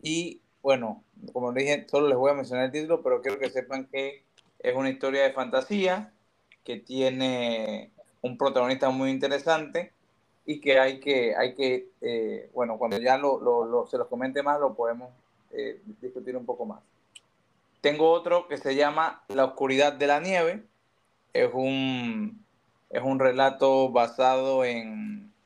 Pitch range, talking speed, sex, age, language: 130-170 Hz, 165 wpm, male, 30-49, Spanish